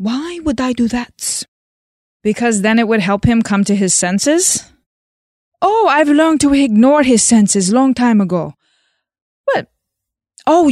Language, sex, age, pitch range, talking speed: English, female, 20-39, 200-295 Hz, 150 wpm